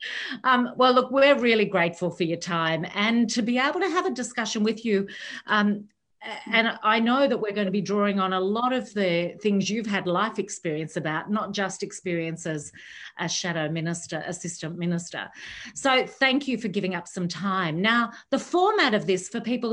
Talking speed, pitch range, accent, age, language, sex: 190 wpm, 180-230 Hz, Australian, 40-59, English, female